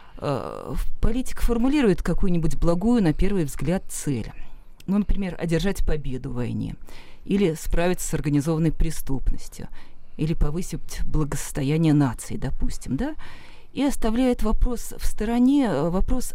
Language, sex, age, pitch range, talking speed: Russian, female, 40-59, 155-220 Hz, 115 wpm